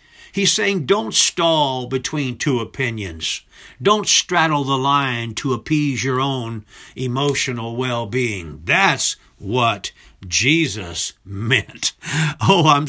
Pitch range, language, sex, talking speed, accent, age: 120-160 Hz, English, male, 105 wpm, American, 60-79